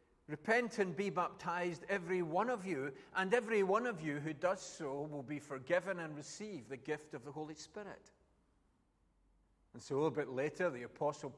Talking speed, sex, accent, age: 185 wpm, male, British, 40-59